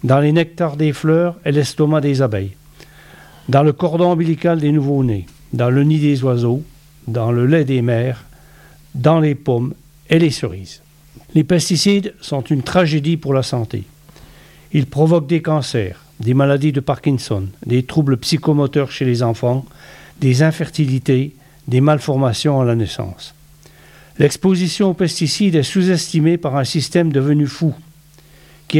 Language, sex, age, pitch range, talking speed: French, male, 60-79, 130-165 Hz, 150 wpm